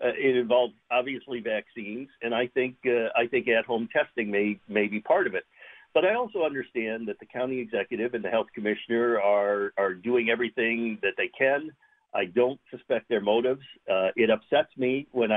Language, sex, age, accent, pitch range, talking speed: English, male, 50-69, American, 115-140 Hz, 185 wpm